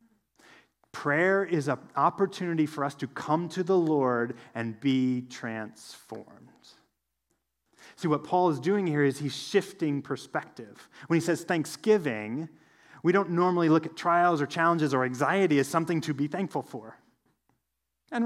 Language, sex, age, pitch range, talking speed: English, male, 30-49, 120-160 Hz, 150 wpm